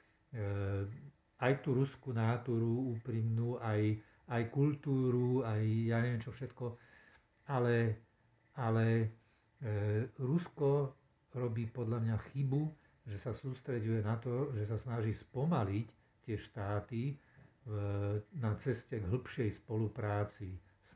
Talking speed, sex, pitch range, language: 110 wpm, male, 105-125 Hz, Slovak